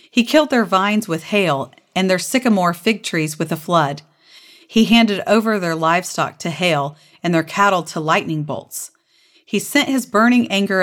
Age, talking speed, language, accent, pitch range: 40-59, 175 wpm, English, American, 165-225 Hz